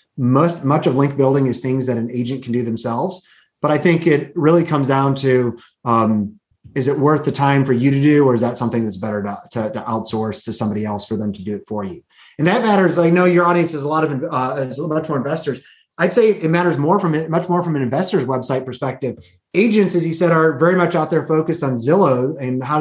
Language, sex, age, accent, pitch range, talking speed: English, male, 30-49, American, 130-170 Hz, 255 wpm